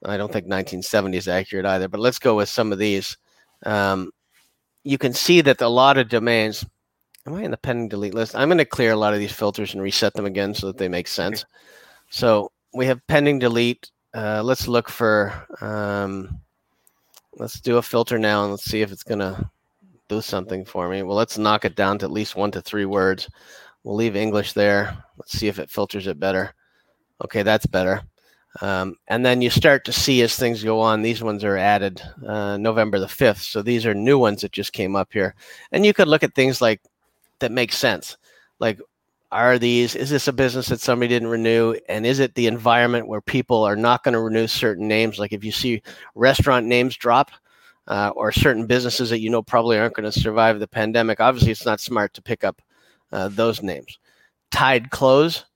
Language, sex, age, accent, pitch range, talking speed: English, male, 30-49, American, 100-120 Hz, 215 wpm